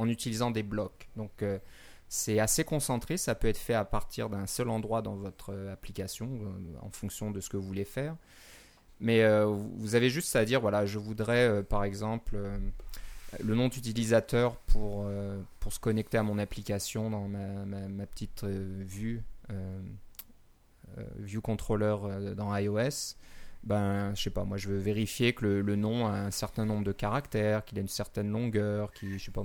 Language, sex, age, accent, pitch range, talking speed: French, male, 20-39, French, 100-125 Hz, 190 wpm